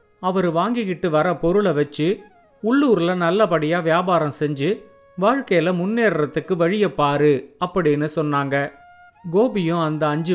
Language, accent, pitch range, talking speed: Tamil, native, 155-205 Hz, 100 wpm